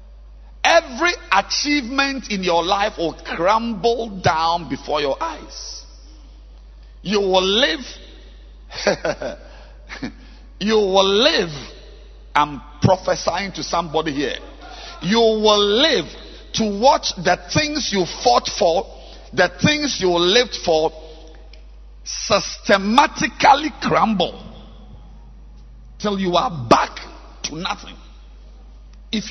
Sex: male